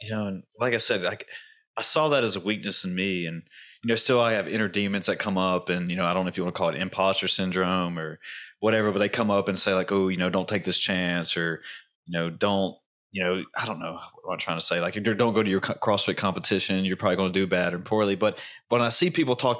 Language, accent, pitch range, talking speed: English, American, 95-125 Hz, 285 wpm